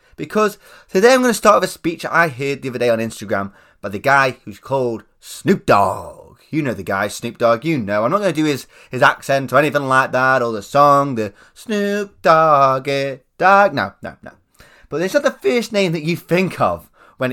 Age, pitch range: 20-39, 125-185 Hz